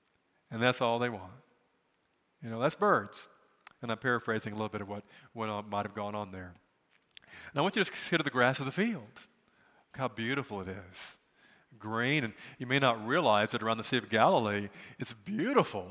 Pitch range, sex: 115-150 Hz, male